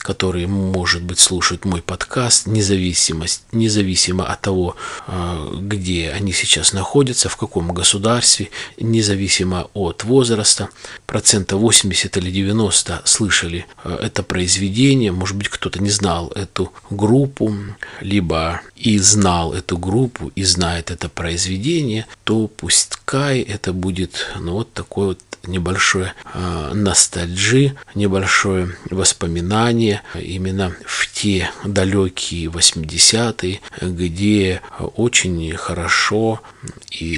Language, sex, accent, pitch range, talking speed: Russian, male, native, 90-110 Hz, 105 wpm